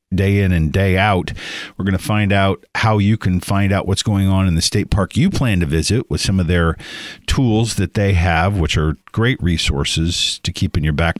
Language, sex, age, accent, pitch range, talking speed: English, male, 50-69, American, 90-105 Hz, 230 wpm